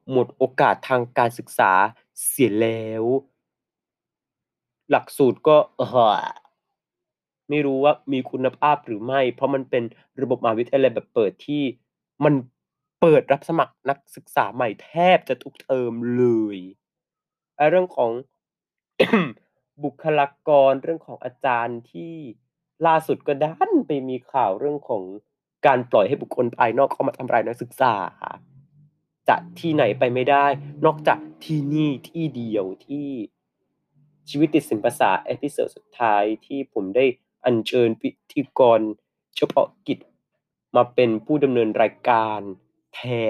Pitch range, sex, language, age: 120-155 Hz, male, Thai, 30-49